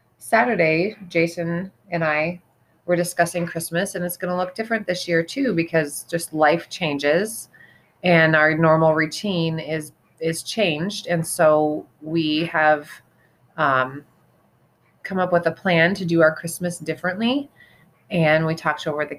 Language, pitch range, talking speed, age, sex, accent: English, 155-180 Hz, 145 wpm, 20-39, female, American